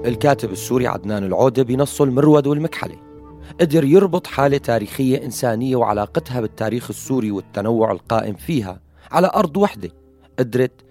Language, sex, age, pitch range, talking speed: Arabic, male, 30-49, 115-155 Hz, 120 wpm